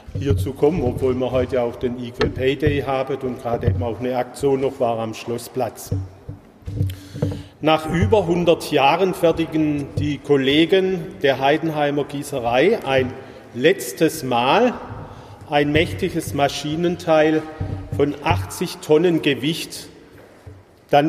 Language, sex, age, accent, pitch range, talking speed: German, male, 40-59, German, 130-165 Hz, 120 wpm